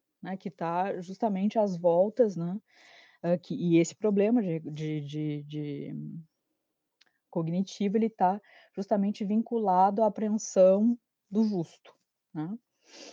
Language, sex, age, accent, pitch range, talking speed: Portuguese, female, 20-39, Brazilian, 165-215 Hz, 115 wpm